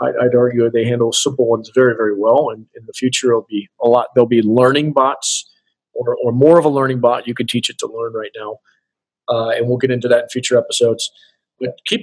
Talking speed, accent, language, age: 235 wpm, American, English, 40-59